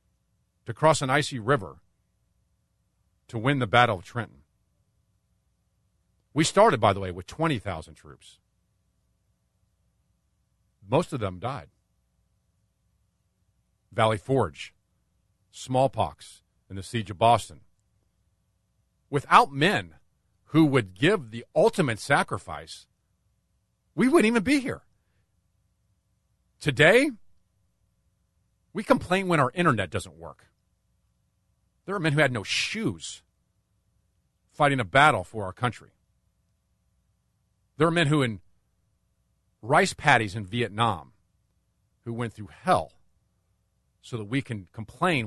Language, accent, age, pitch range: English, American, 50-69, 95-125 Hz